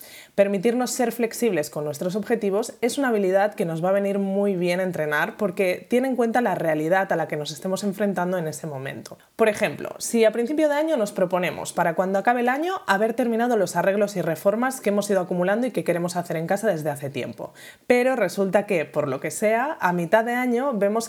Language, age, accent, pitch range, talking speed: Spanish, 20-39, Spanish, 175-225 Hz, 220 wpm